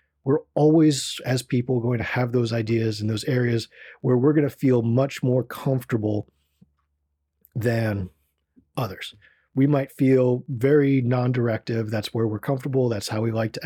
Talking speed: 160 wpm